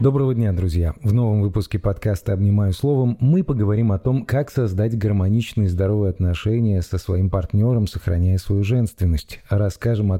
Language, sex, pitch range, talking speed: Russian, male, 95-125 Hz, 160 wpm